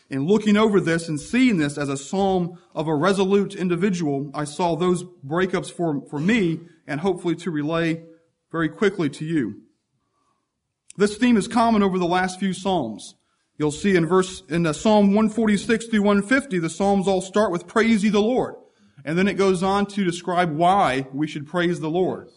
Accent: American